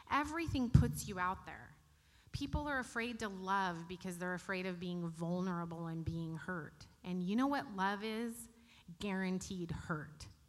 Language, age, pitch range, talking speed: English, 30-49, 170-215 Hz, 155 wpm